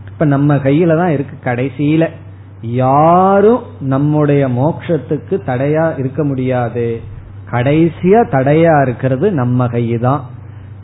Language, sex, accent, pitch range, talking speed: Tamil, male, native, 120-155 Hz, 85 wpm